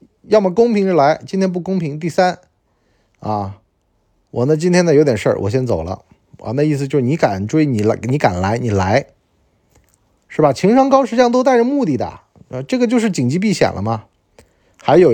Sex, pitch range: male, 100-160 Hz